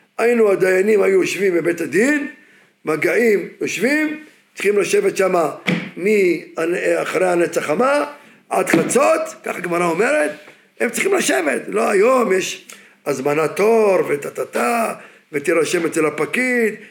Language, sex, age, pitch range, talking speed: Hebrew, male, 50-69, 200-320 Hz, 115 wpm